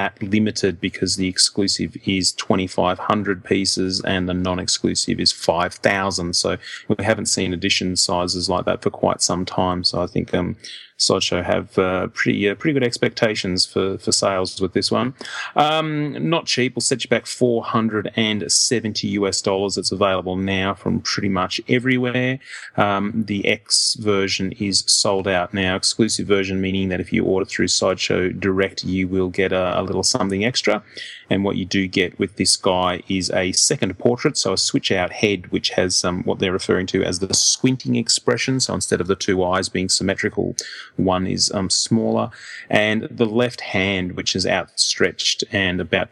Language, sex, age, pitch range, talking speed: English, male, 30-49, 90-115 Hz, 170 wpm